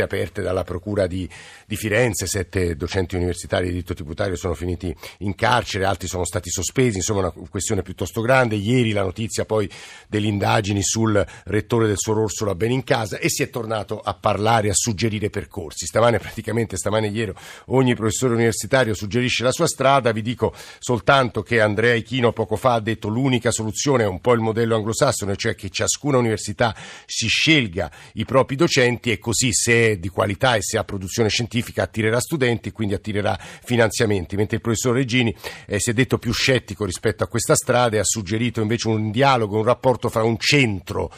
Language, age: Italian, 50-69